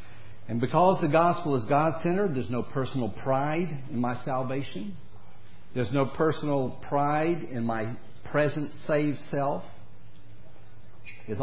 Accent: American